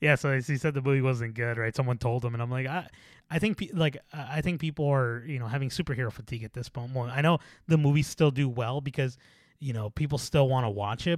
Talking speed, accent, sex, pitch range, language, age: 265 wpm, American, male, 125-150 Hz, English, 20-39